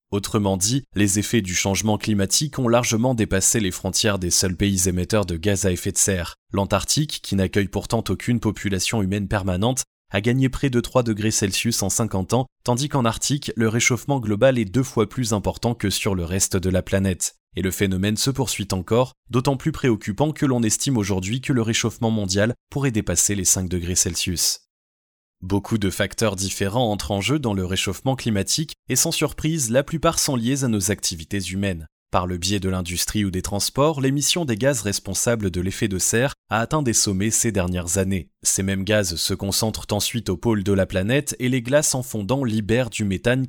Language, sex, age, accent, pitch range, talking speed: French, male, 20-39, French, 95-125 Hz, 200 wpm